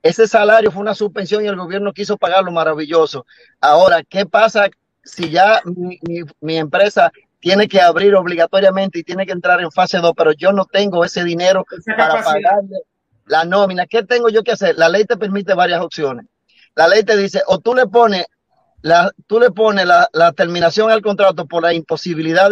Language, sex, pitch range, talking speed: Spanish, male, 170-205 Hz, 190 wpm